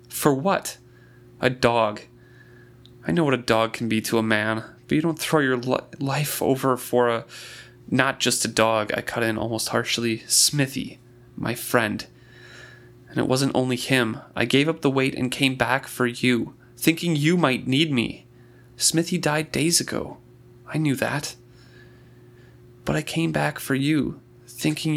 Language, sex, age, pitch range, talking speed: English, male, 30-49, 120-130 Hz, 165 wpm